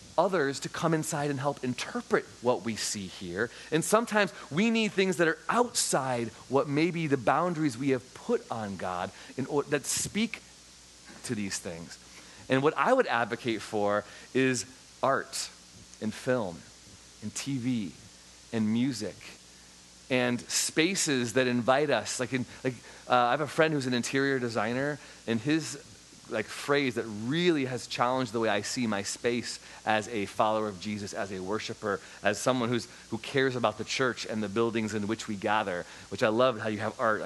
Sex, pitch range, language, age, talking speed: male, 100-135 Hz, English, 30-49, 180 wpm